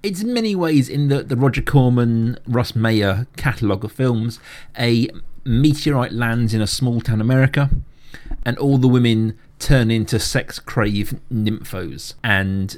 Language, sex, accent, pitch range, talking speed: English, male, British, 115-145 Hz, 150 wpm